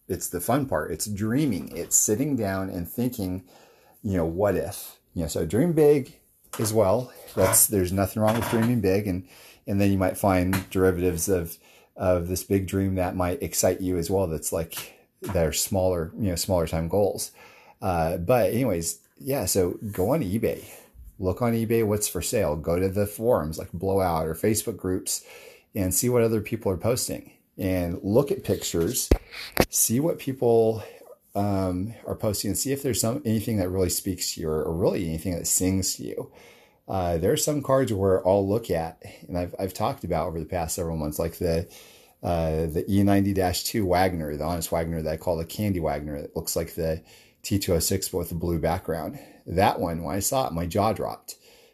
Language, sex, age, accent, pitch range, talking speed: English, male, 30-49, American, 85-105 Hz, 195 wpm